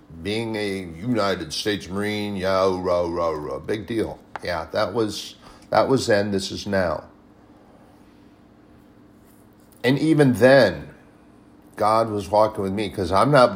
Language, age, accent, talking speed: English, 50-69, American, 120 wpm